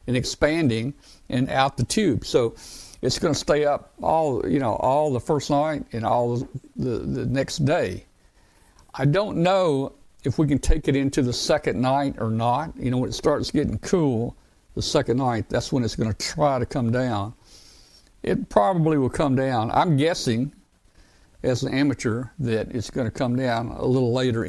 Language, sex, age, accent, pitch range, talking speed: English, male, 60-79, American, 115-140 Hz, 190 wpm